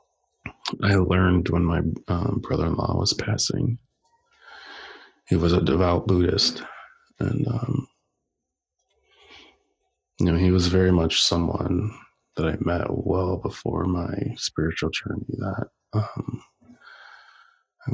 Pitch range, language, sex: 90-135 Hz, English, male